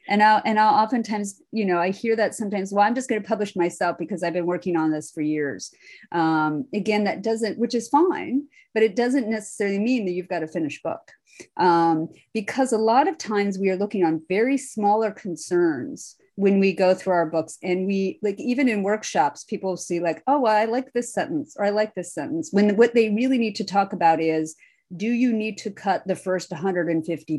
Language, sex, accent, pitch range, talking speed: English, female, American, 170-220 Hz, 210 wpm